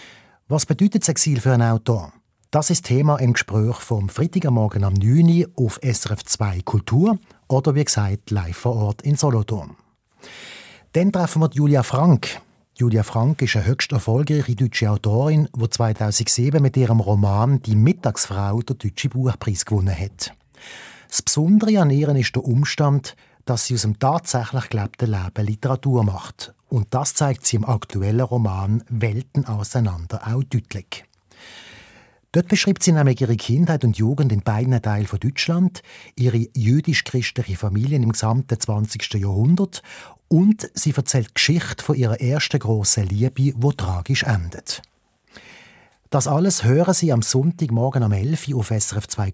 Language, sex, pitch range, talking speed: German, male, 110-145 Hz, 155 wpm